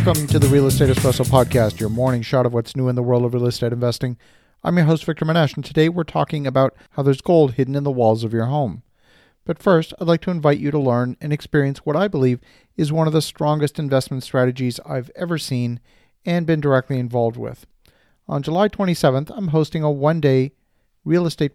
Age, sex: 40-59, male